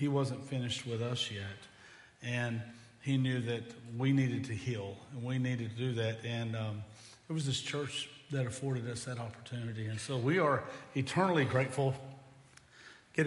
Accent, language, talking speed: American, English, 170 wpm